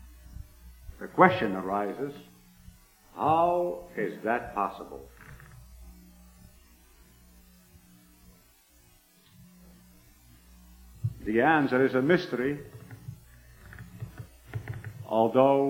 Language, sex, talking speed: English, male, 50 wpm